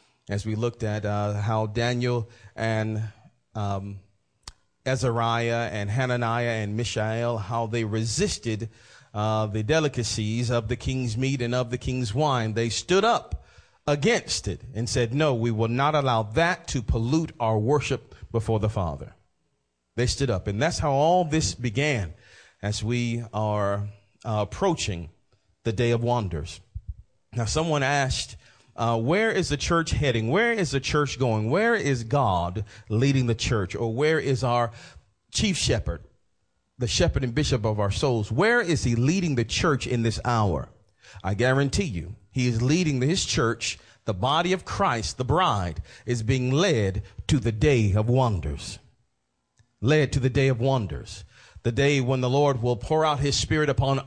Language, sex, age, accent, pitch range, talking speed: English, male, 40-59, American, 110-140 Hz, 165 wpm